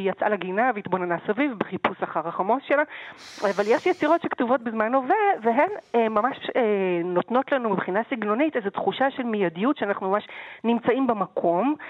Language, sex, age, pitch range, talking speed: Hebrew, female, 40-59, 190-265 Hz, 145 wpm